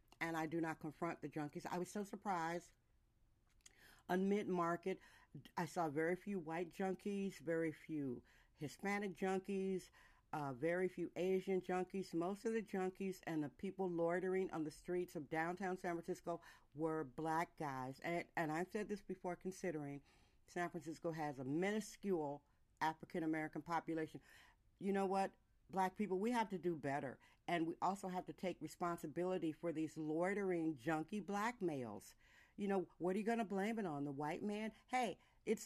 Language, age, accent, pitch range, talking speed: English, 50-69, American, 160-195 Hz, 165 wpm